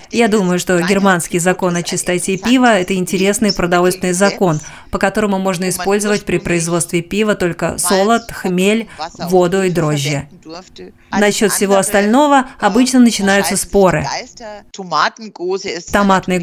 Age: 30-49